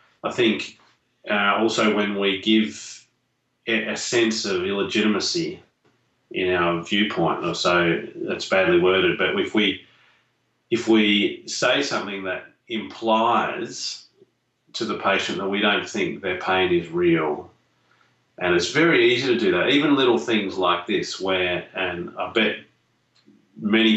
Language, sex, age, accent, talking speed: English, male, 30-49, Australian, 140 wpm